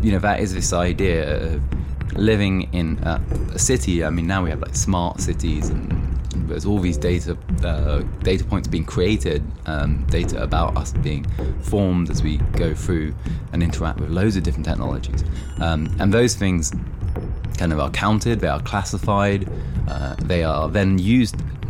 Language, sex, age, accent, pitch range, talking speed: English, male, 20-39, British, 75-95 Hz, 170 wpm